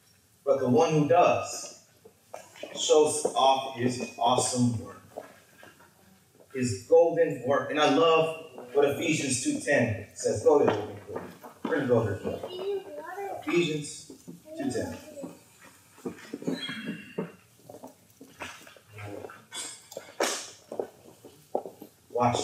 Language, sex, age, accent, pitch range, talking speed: English, male, 30-49, American, 135-185 Hz, 95 wpm